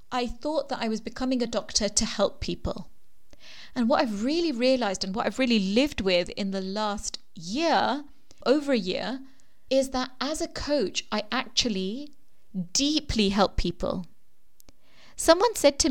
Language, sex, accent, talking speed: English, female, British, 160 wpm